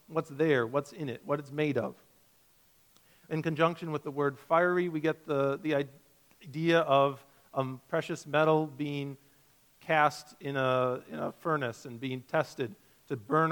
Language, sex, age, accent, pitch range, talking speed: English, male, 40-59, American, 140-175 Hz, 160 wpm